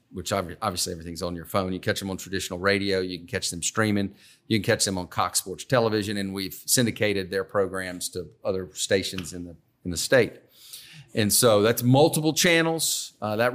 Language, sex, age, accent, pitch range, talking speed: English, male, 40-59, American, 100-125 Hz, 200 wpm